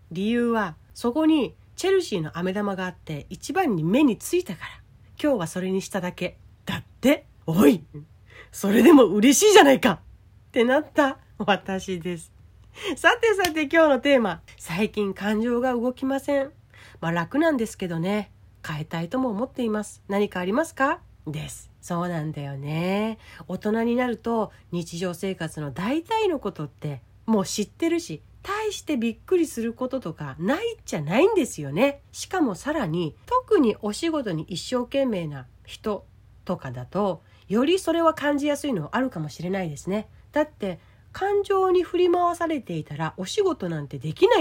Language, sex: Japanese, female